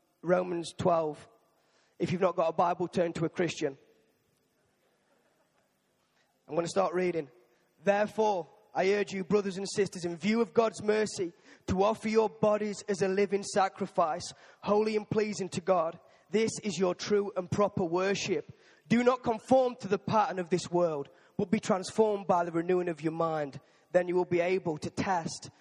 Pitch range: 165-200 Hz